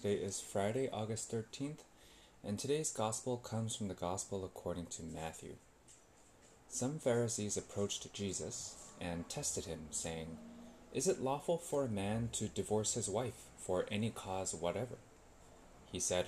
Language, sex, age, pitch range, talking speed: English, male, 20-39, 95-125 Hz, 145 wpm